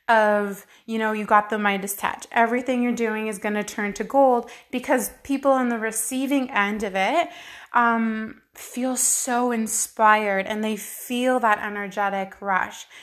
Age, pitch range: 20-39, 210-245 Hz